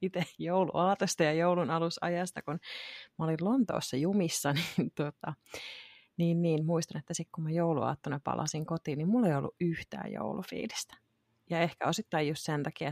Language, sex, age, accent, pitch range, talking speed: Finnish, female, 30-49, native, 155-190 Hz, 155 wpm